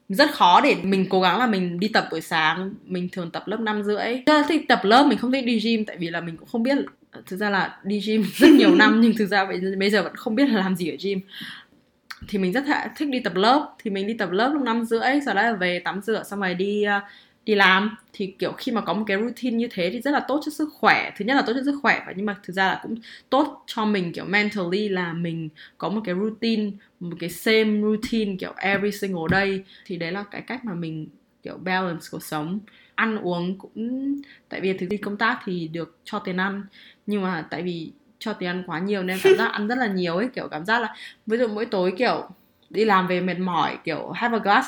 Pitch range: 185-225 Hz